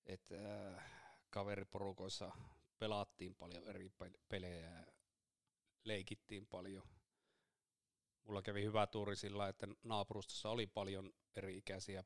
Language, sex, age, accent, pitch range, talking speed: Finnish, male, 30-49, native, 95-110 Hz, 100 wpm